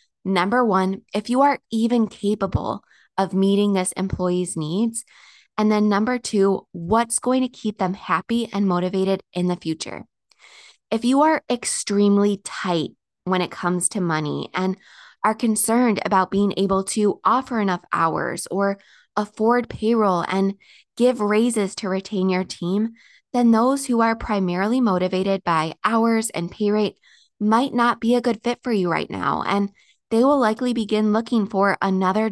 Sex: female